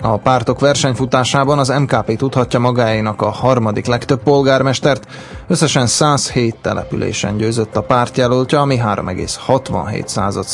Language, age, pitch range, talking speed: Slovak, 20-39, 115-140 Hz, 110 wpm